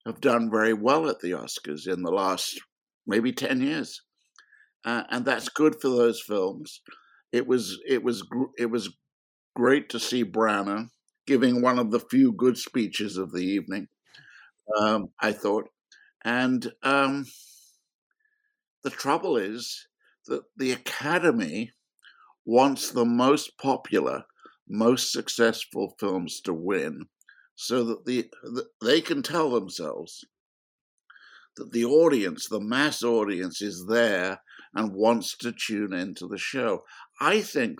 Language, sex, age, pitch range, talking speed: English, male, 60-79, 110-135 Hz, 140 wpm